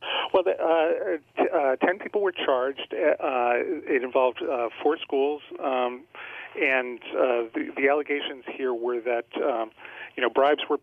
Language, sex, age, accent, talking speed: English, male, 40-59, American, 160 wpm